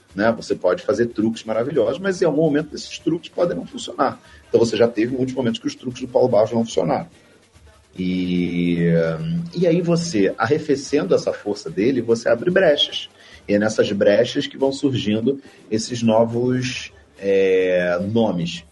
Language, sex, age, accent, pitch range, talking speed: Portuguese, male, 40-59, Brazilian, 90-135 Hz, 165 wpm